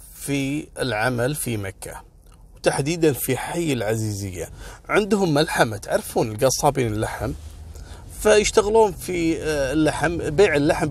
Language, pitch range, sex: Arabic, 110-160 Hz, male